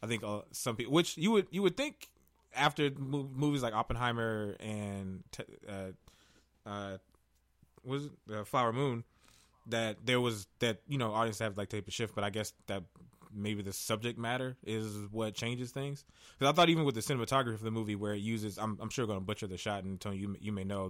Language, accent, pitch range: English, American, 100-125 Hz